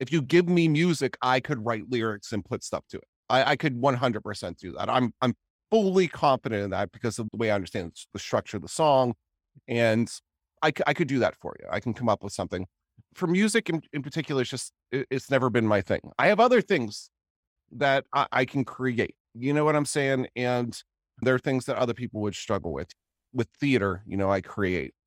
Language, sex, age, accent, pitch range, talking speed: English, male, 30-49, American, 100-135 Hz, 225 wpm